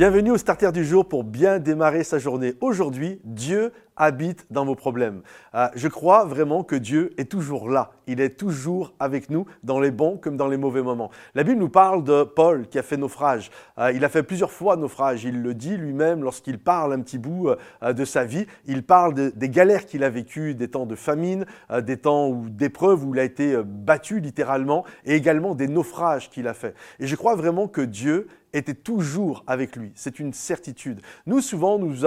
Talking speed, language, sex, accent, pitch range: 210 wpm, French, male, French, 135-175 Hz